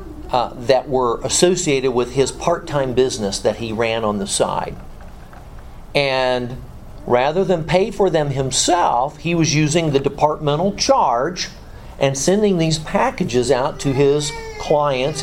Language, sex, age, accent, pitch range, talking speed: English, male, 50-69, American, 120-160 Hz, 140 wpm